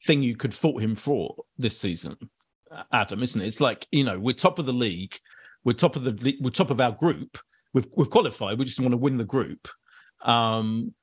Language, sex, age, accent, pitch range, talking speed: English, male, 40-59, British, 115-150 Hz, 220 wpm